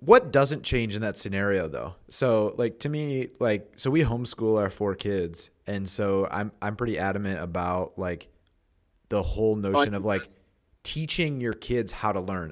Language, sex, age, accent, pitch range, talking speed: English, male, 30-49, American, 90-110 Hz, 175 wpm